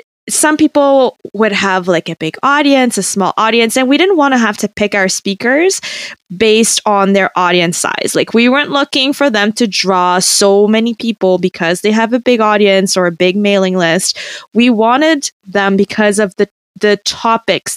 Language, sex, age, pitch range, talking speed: English, female, 20-39, 190-240 Hz, 190 wpm